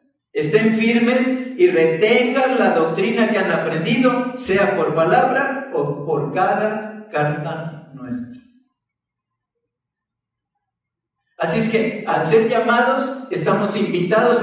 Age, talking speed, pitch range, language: 50-69, 105 wpm, 180-230 Hz, Spanish